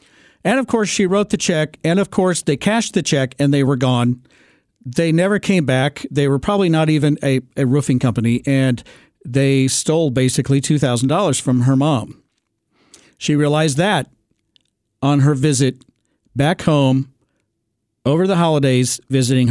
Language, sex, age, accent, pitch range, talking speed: English, male, 50-69, American, 135-185 Hz, 155 wpm